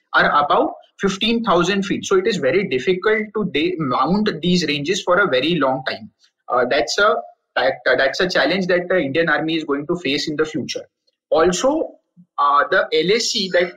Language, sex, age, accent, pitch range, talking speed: English, male, 30-49, Indian, 170-230 Hz, 185 wpm